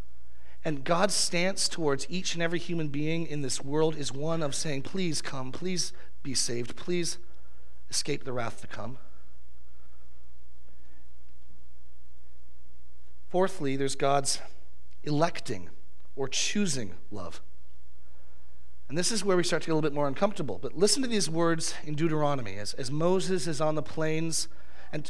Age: 40-59